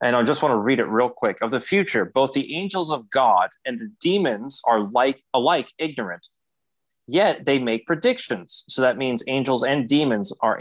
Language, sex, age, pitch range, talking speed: English, male, 30-49, 120-190 Hz, 200 wpm